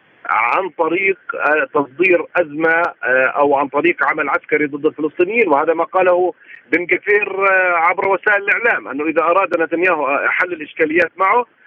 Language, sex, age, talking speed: Arabic, male, 40-59, 130 wpm